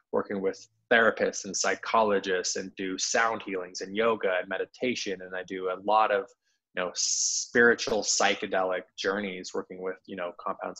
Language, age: English, 20-39